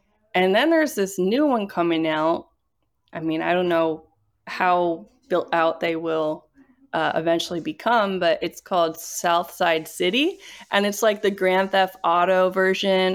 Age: 20-39